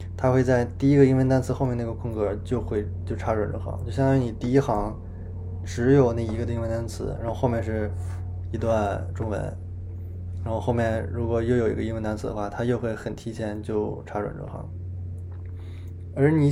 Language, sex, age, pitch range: Chinese, male, 20-39, 90-115 Hz